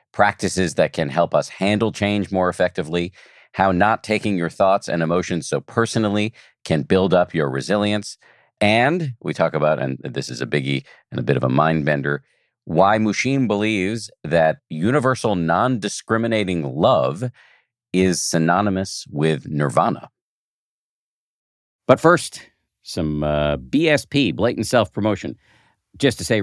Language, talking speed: English, 140 wpm